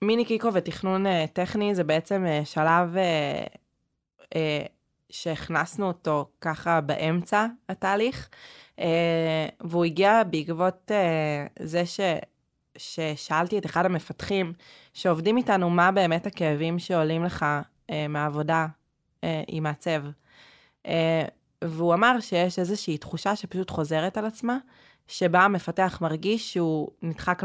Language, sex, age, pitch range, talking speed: Hebrew, female, 20-39, 160-190 Hz, 95 wpm